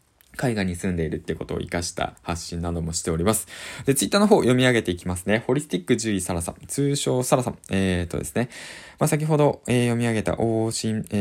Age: 20-39